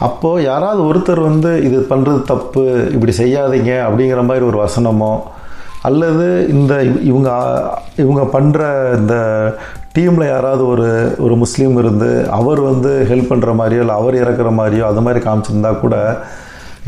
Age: 40-59